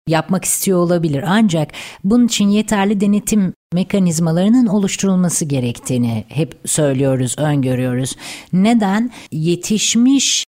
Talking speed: 90 wpm